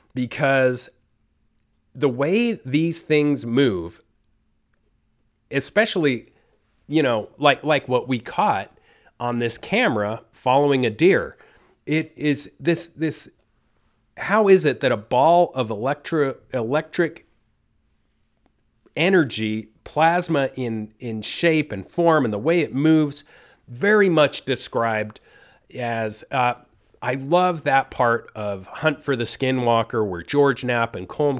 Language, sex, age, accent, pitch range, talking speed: English, male, 30-49, American, 115-165 Hz, 120 wpm